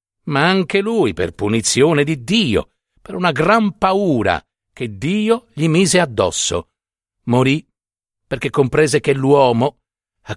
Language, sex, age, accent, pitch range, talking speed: Italian, male, 50-69, native, 105-170 Hz, 125 wpm